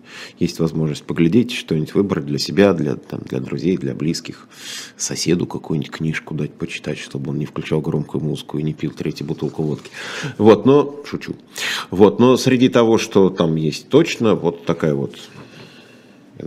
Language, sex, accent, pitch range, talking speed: Russian, male, native, 85-120 Hz, 165 wpm